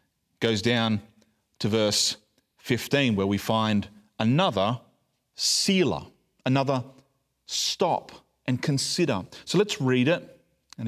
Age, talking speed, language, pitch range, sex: 40-59, 105 wpm, English, 120-170 Hz, male